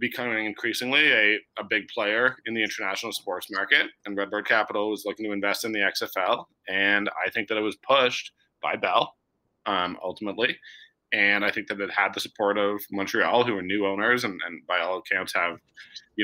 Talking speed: 195 wpm